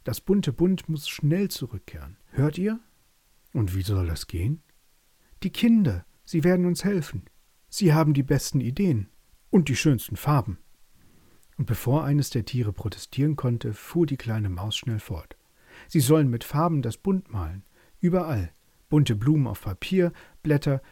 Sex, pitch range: male, 100-160 Hz